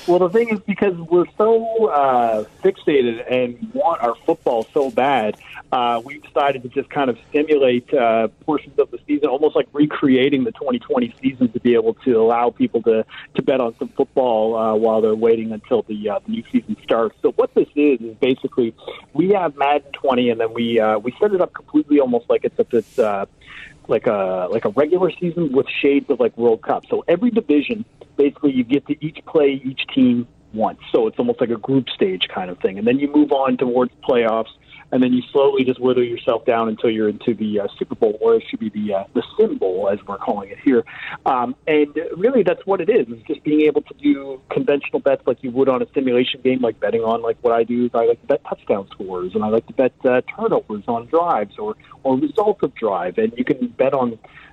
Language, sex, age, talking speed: English, male, 40-59, 225 wpm